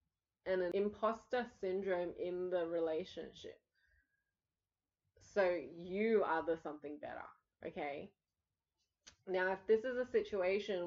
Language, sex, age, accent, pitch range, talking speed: English, female, 20-39, Australian, 160-220 Hz, 110 wpm